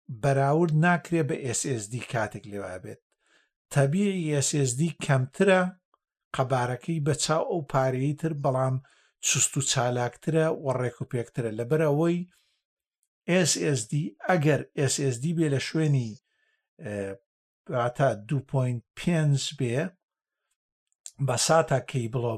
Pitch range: 130-165 Hz